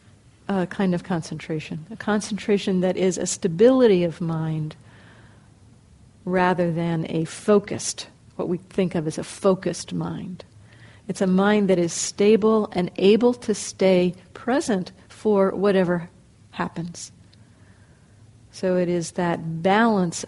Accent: American